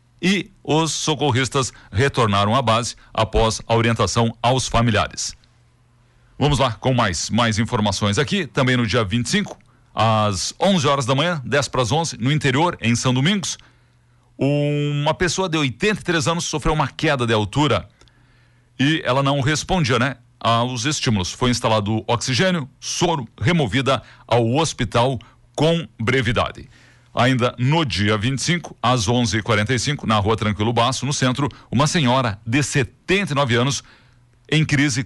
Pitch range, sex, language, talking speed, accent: 115-145 Hz, male, Portuguese, 140 wpm, Brazilian